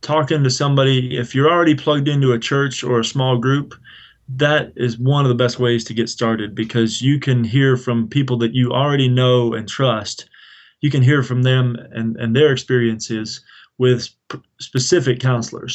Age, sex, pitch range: 20-39, male, 120-135 Hz